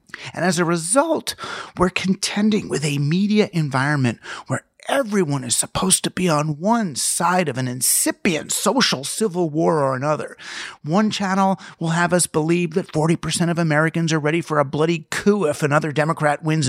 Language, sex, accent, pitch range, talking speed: English, male, American, 150-200 Hz, 170 wpm